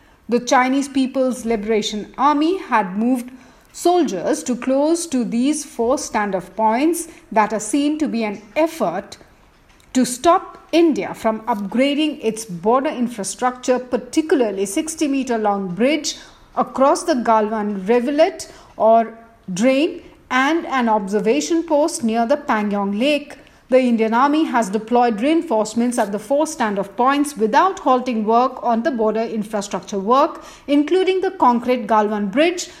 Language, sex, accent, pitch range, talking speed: English, female, Indian, 215-275 Hz, 130 wpm